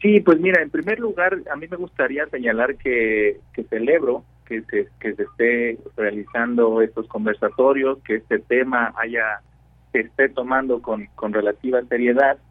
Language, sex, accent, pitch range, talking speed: Spanish, male, Mexican, 105-130 Hz, 155 wpm